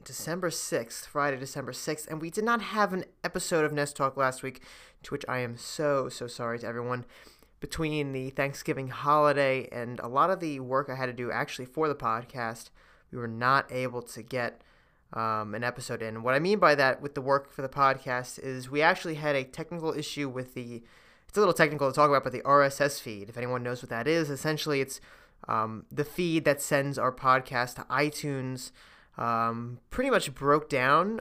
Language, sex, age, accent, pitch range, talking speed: English, male, 30-49, American, 125-150 Hz, 205 wpm